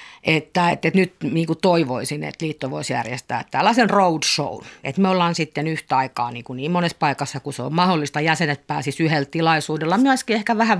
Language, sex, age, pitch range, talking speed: Finnish, female, 50-69, 140-175 Hz, 190 wpm